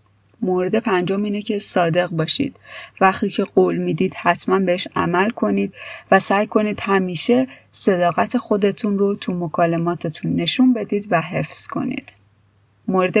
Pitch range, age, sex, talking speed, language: 170-200 Hz, 30-49, female, 130 wpm, Persian